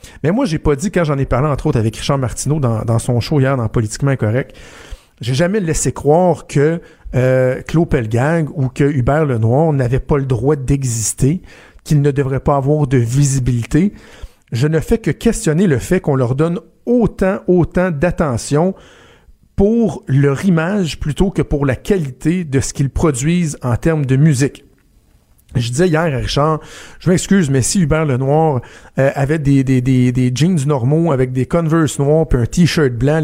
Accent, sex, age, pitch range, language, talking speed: Canadian, male, 50-69, 130-165 Hz, French, 185 wpm